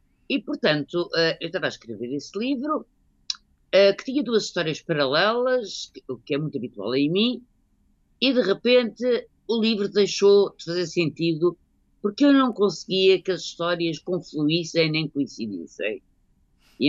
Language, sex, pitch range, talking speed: Portuguese, female, 145-215 Hz, 140 wpm